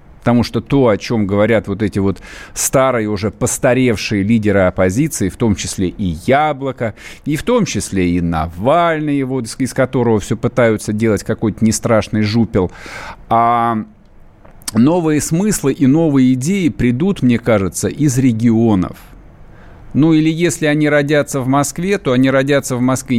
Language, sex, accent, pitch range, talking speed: Russian, male, native, 100-135 Hz, 145 wpm